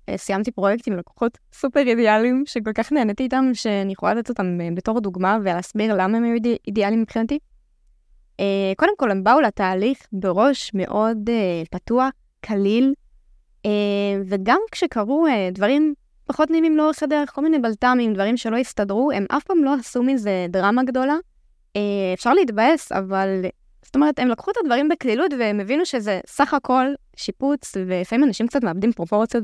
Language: Hebrew